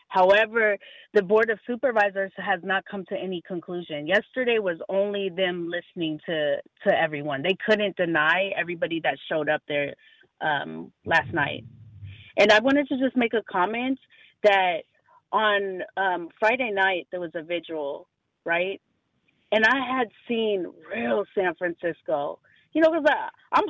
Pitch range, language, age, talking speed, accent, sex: 175-230 Hz, English, 30-49, 145 wpm, American, female